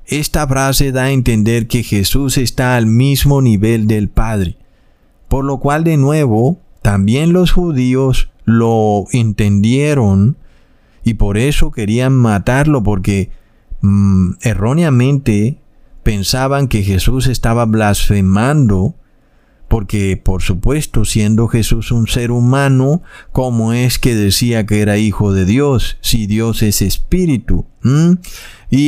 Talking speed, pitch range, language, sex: 125 wpm, 105-135 Hz, Spanish, male